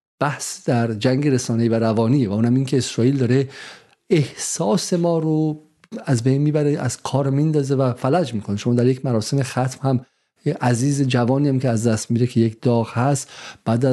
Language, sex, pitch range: Persian, male, 120-145 Hz